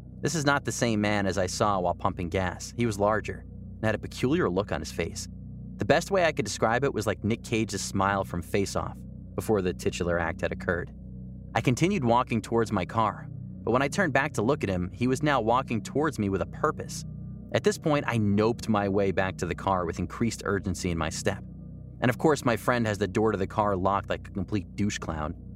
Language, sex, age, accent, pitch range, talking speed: English, male, 30-49, American, 95-115 Hz, 240 wpm